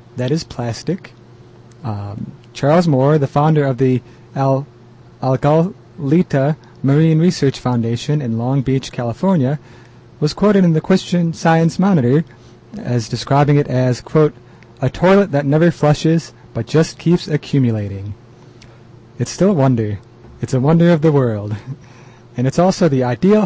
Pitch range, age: 120-155 Hz, 30-49